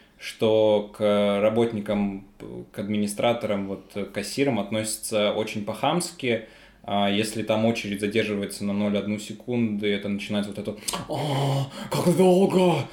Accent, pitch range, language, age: native, 105-130 Hz, Russian, 20-39